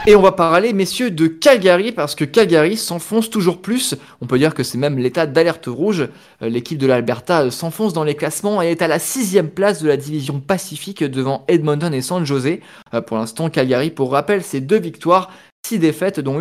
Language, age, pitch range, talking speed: French, 20-39, 135-180 Hz, 200 wpm